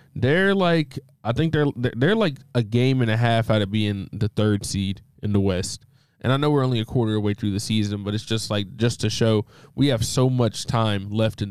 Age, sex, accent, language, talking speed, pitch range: 20-39, male, American, English, 250 wpm, 105-130 Hz